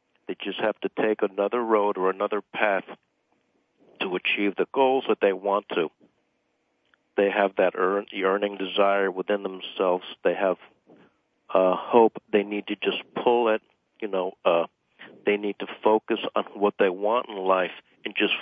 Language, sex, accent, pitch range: English, male, American, 95-110 Hz